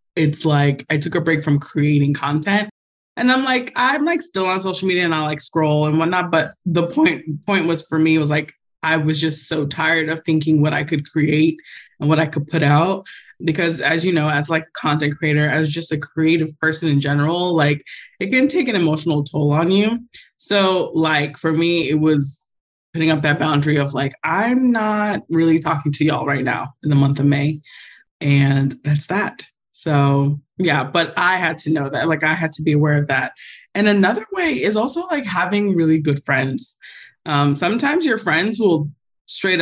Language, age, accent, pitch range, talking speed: English, 20-39, American, 150-180 Hz, 205 wpm